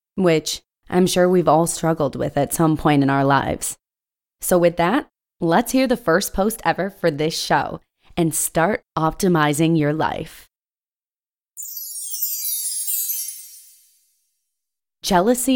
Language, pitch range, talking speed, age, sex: English, 150-180 Hz, 120 wpm, 20-39, female